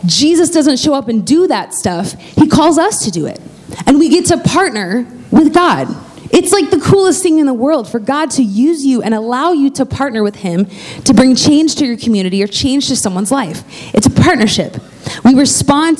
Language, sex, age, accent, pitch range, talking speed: English, female, 20-39, American, 205-295 Hz, 215 wpm